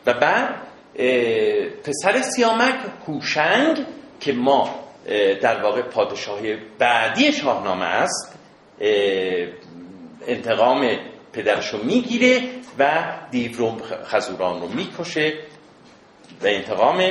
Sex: male